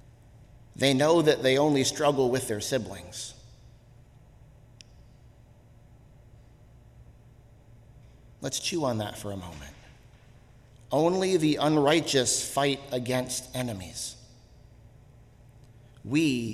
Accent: American